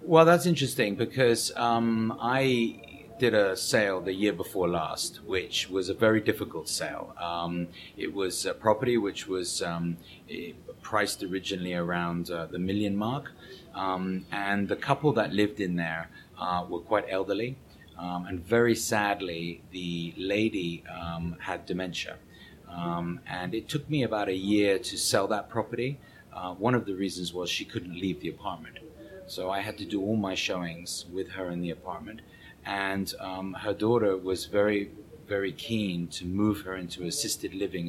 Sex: male